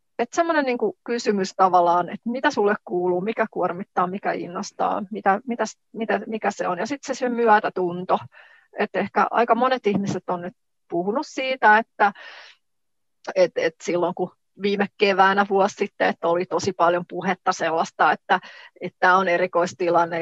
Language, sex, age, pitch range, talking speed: Finnish, female, 30-49, 180-230 Hz, 150 wpm